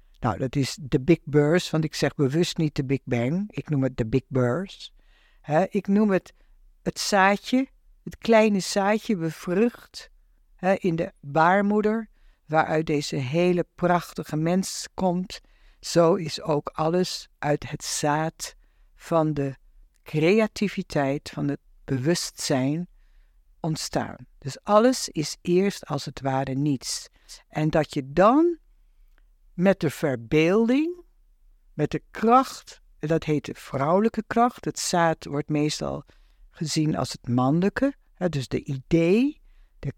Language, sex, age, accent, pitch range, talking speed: Dutch, female, 60-79, Dutch, 145-200 Hz, 130 wpm